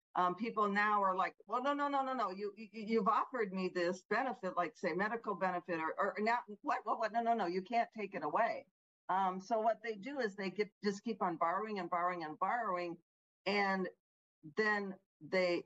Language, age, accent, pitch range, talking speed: English, 50-69, American, 180-220 Hz, 210 wpm